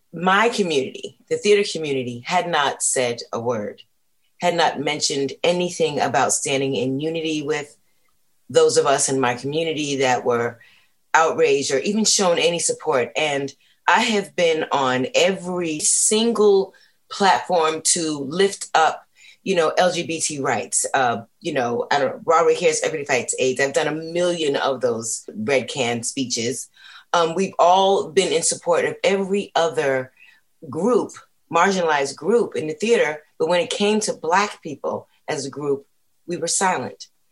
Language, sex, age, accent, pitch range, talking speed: English, female, 30-49, American, 135-205 Hz, 155 wpm